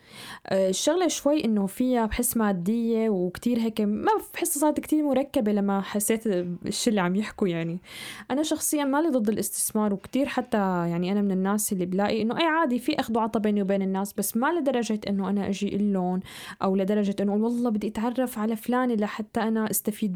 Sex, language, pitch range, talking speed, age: female, Arabic, 190-245 Hz, 180 wpm, 10-29